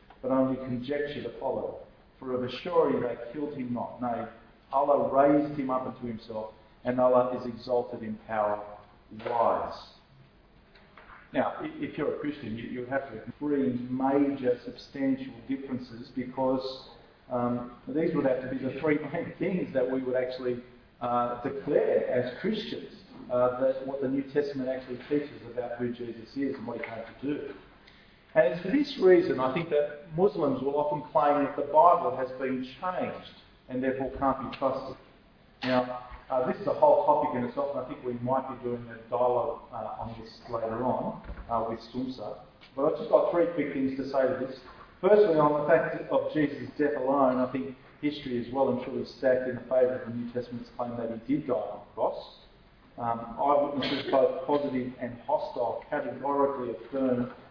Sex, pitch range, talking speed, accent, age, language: male, 120-145 Hz, 185 wpm, Australian, 40-59, English